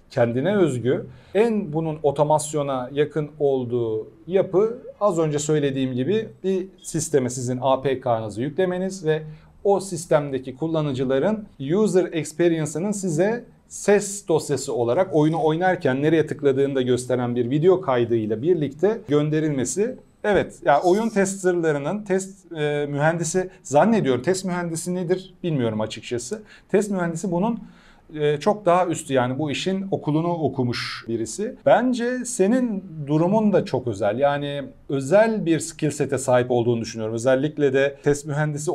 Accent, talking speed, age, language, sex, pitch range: native, 125 wpm, 40-59, Turkish, male, 135-185 Hz